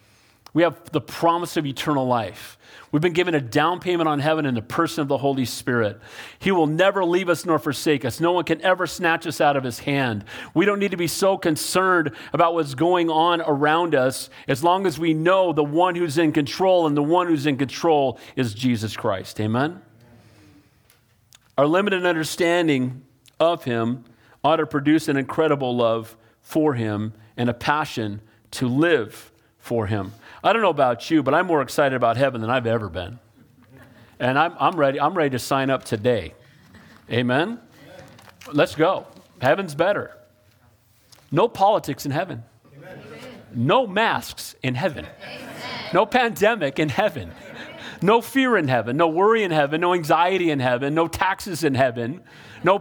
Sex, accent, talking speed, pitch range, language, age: male, American, 175 wpm, 125-175 Hz, English, 40-59